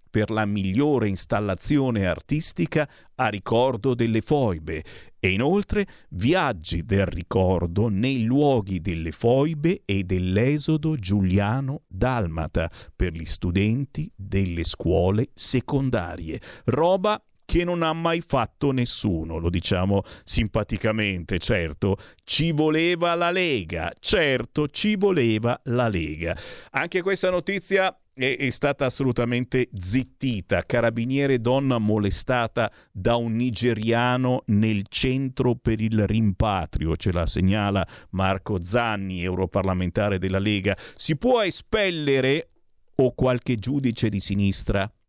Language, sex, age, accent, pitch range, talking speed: Italian, male, 50-69, native, 100-130 Hz, 110 wpm